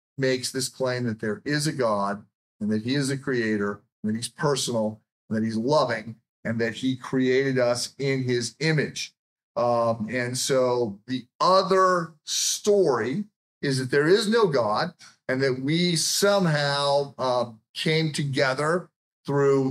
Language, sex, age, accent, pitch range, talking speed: English, male, 50-69, American, 120-150 Hz, 150 wpm